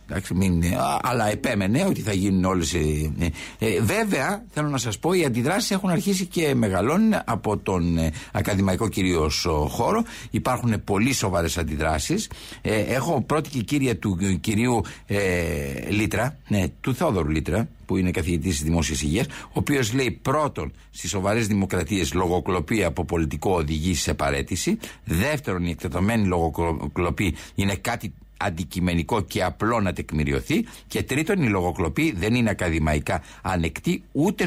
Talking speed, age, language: 140 wpm, 60-79, Greek